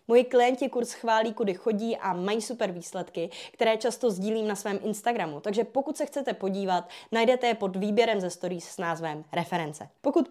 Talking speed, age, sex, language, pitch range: 180 wpm, 20-39, female, Czech, 190-245 Hz